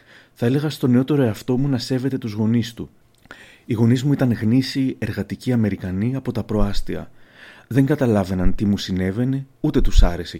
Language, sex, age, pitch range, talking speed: Greek, male, 30-49, 100-125 Hz, 165 wpm